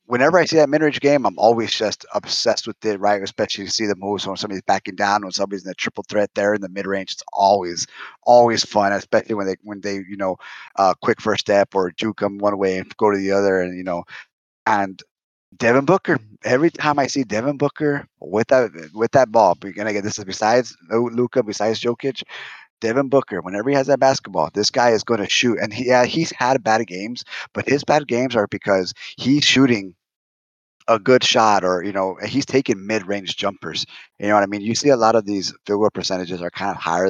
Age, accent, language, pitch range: 30-49, American, English, 95-125 Hz